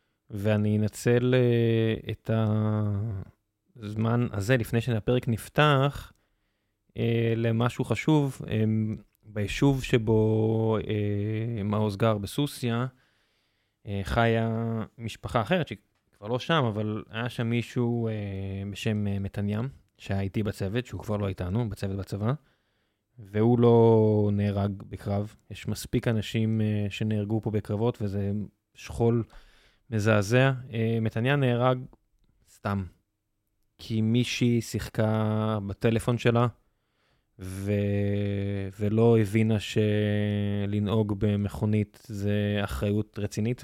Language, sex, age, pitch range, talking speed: Hebrew, male, 20-39, 105-115 Hz, 100 wpm